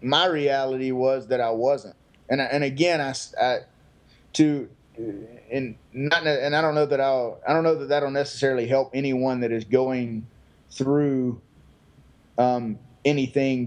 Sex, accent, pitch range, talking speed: male, American, 120-140 Hz, 155 wpm